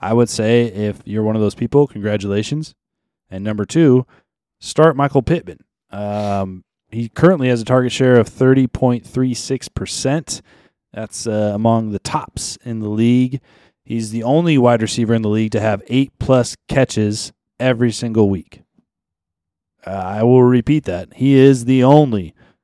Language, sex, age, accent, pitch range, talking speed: English, male, 20-39, American, 105-125 Hz, 150 wpm